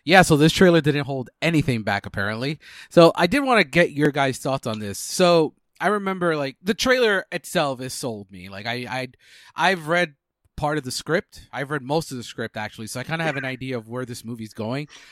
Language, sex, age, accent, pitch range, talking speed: English, male, 30-49, American, 115-155 Hz, 235 wpm